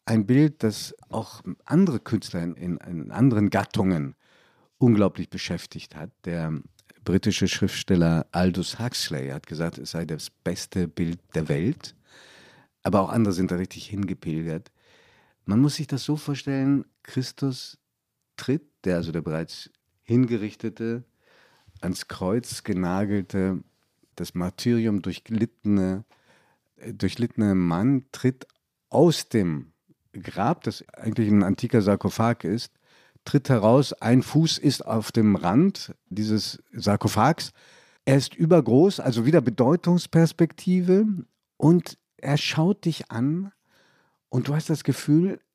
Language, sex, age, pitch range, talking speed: German, male, 50-69, 100-140 Hz, 120 wpm